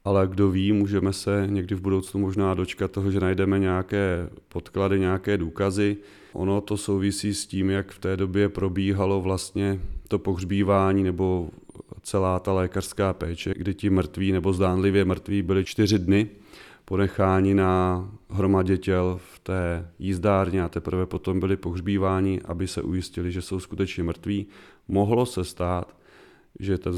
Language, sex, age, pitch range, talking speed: Czech, male, 30-49, 90-100 Hz, 150 wpm